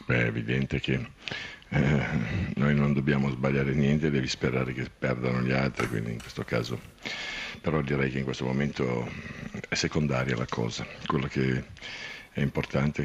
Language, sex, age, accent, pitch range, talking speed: Italian, male, 50-69, native, 65-75 Hz, 150 wpm